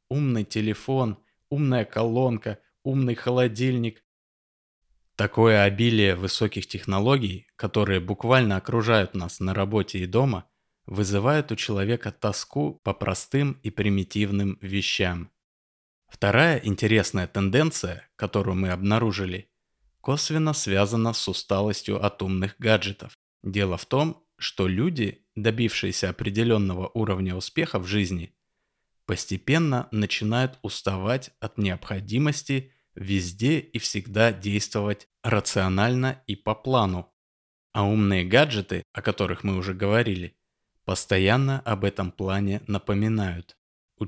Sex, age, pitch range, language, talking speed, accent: male, 20-39, 95-120 Hz, Russian, 105 wpm, native